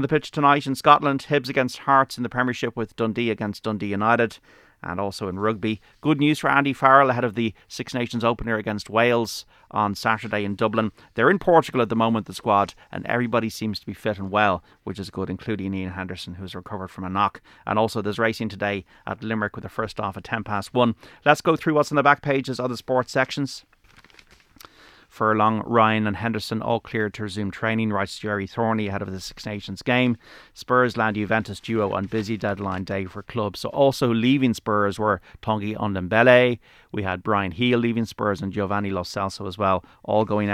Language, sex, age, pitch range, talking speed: English, male, 30-49, 100-120 Hz, 205 wpm